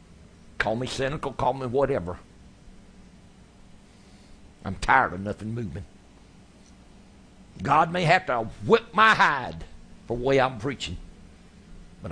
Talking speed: 120 wpm